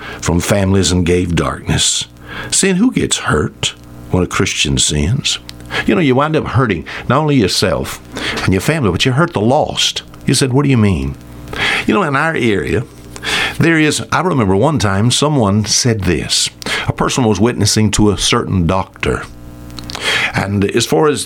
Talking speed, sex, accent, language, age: 175 wpm, male, American, English, 60-79